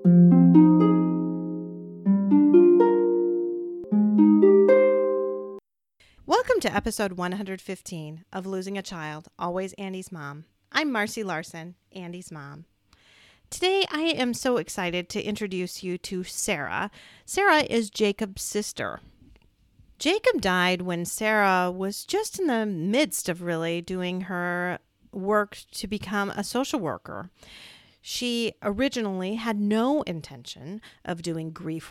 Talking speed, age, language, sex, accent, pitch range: 105 wpm, 40-59, English, female, American, 165-220 Hz